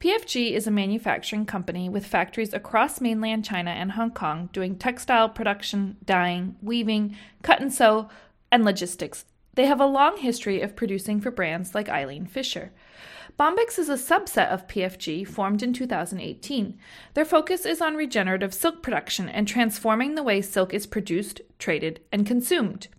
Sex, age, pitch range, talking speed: female, 40-59, 200-270 Hz, 160 wpm